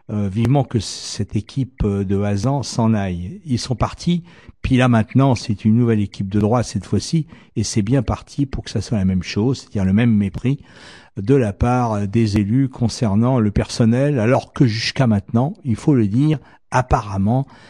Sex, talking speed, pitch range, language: male, 185 wpm, 105-135 Hz, French